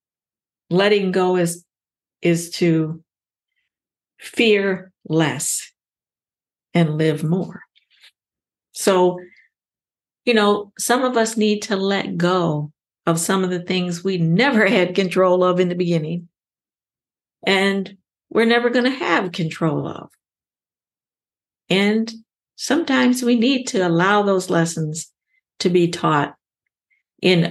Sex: female